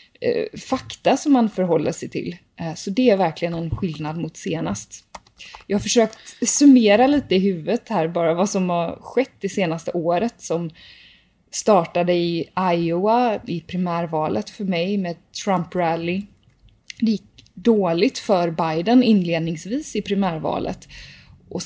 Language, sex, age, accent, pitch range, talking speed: Swedish, female, 20-39, native, 170-210 Hz, 140 wpm